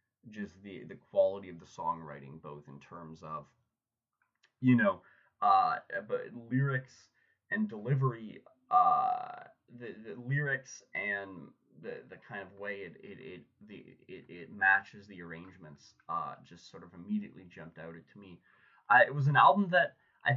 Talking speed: 155 wpm